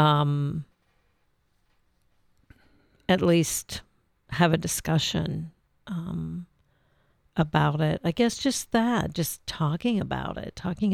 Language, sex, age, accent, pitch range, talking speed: English, female, 50-69, American, 120-185 Hz, 100 wpm